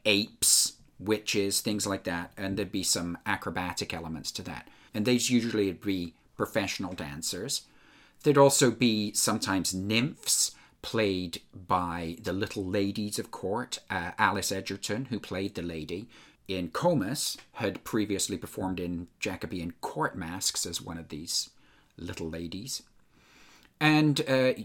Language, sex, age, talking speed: English, male, 40-59, 135 wpm